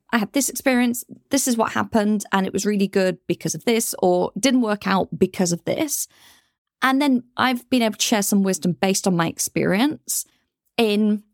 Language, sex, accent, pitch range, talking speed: English, female, British, 185-245 Hz, 195 wpm